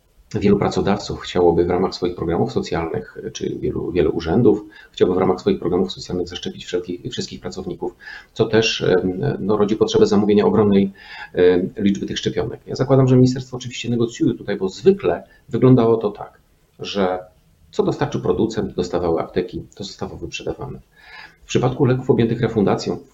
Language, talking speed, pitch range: Polish, 150 wpm, 100-135 Hz